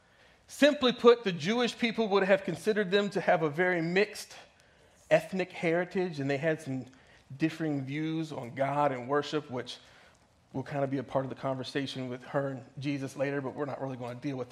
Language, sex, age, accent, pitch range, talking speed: English, male, 40-59, American, 140-200 Hz, 205 wpm